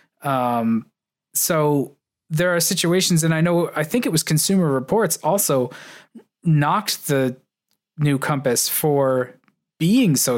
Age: 20-39